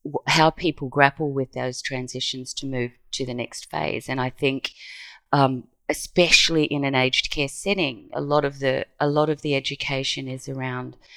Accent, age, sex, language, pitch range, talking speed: Australian, 30-49, female, English, 135-155 Hz, 175 wpm